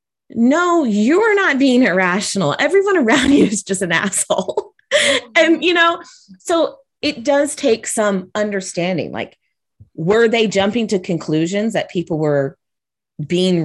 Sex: female